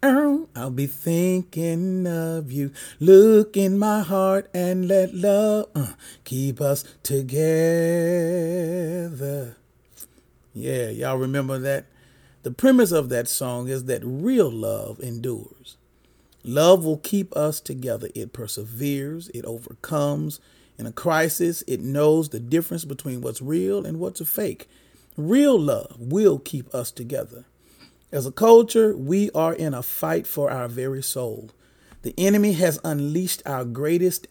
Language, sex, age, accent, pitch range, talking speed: English, male, 40-59, American, 130-185 Hz, 135 wpm